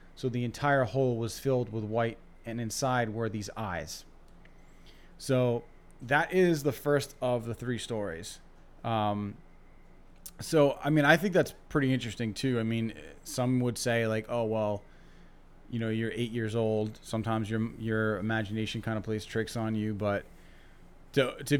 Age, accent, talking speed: 30-49, American, 165 wpm